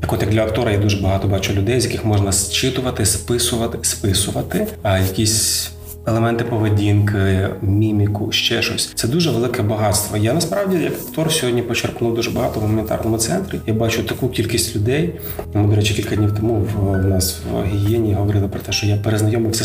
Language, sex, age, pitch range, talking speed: Ukrainian, male, 20-39, 100-115 Hz, 185 wpm